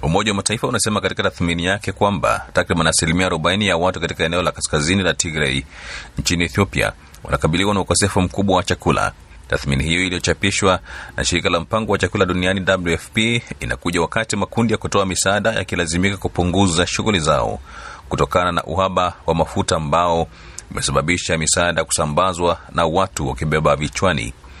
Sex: male